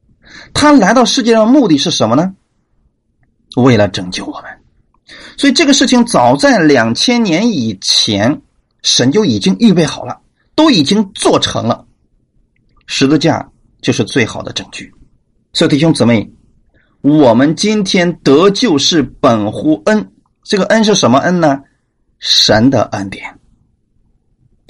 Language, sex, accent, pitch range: Chinese, male, native, 140-230 Hz